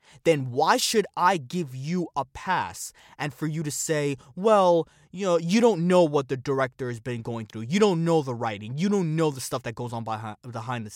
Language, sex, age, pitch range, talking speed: English, male, 20-39, 130-170 Hz, 225 wpm